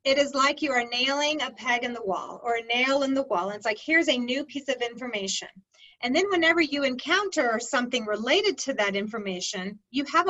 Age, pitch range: 40-59, 230-300 Hz